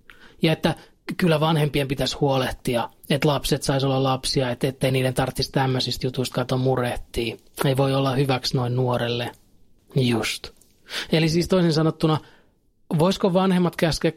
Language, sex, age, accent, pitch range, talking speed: Finnish, male, 30-49, native, 135-175 Hz, 135 wpm